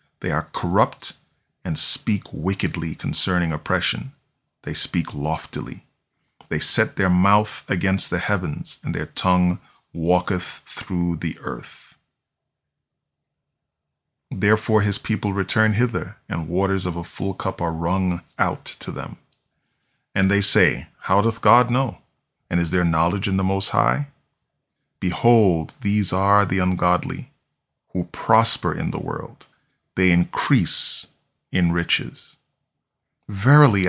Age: 30-49